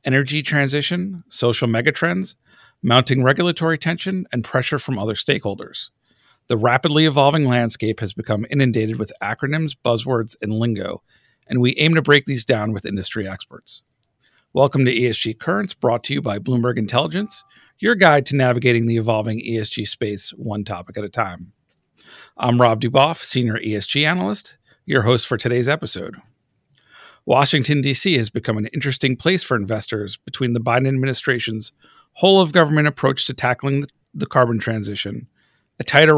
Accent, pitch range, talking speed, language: American, 115-145 Hz, 150 wpm, English